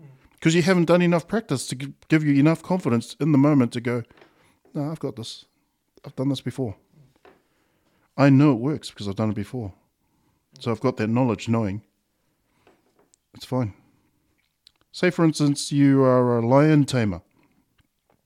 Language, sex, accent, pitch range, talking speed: English, male, Australian, 115-160 Hz, 160 wpm